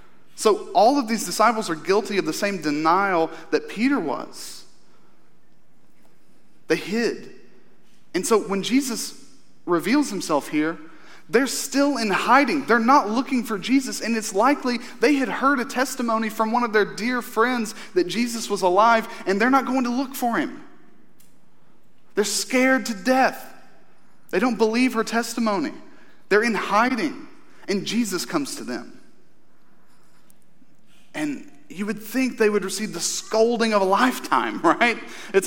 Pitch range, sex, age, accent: 185-270 Hz, male, 30-49, American